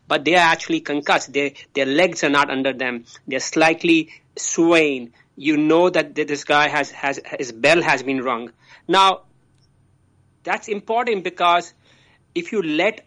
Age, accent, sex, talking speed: 30-49, Indian, male, 155 wpm